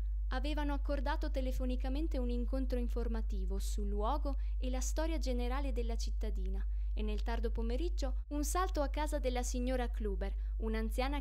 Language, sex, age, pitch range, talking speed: Italian, female, 20-39, 210-265 Hz, 140 wpm